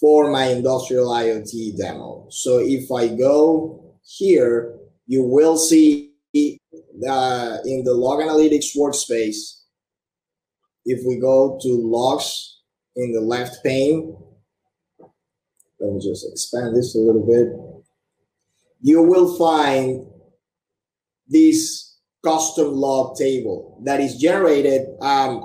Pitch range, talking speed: 120-145 Hz, 110 wpm